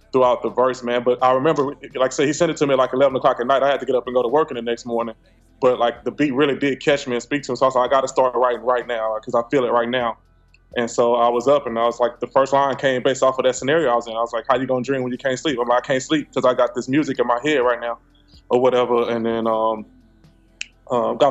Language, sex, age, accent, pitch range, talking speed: English, male, 20-39, American, 120-130 Hz, 330 wpm